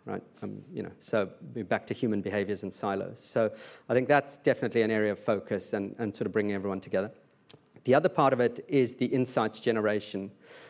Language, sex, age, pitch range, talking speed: English, male, 40-59, 105-120 Hz, 200 wpm